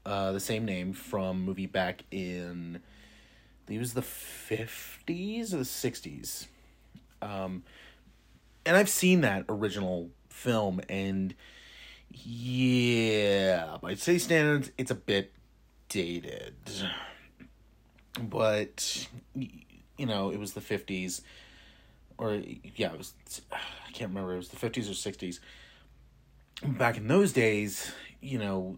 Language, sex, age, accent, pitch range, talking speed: English, male, 30-49, American, 95-125 Hz, 120 wpm